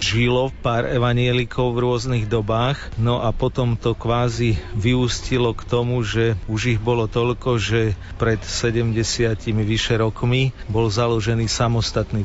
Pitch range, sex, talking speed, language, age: 110-125 Hz, male, 130 wpm, Slovak, 40-59